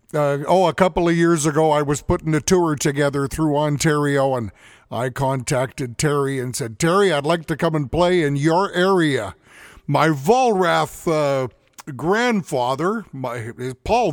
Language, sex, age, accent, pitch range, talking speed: English, male, 50-69, American, 140-165 Hz, 155 wpm